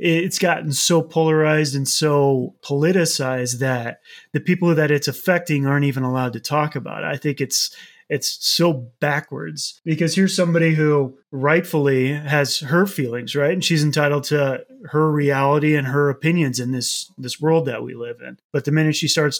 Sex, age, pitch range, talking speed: male, 30-49, 140-160 Hz, 175 wpm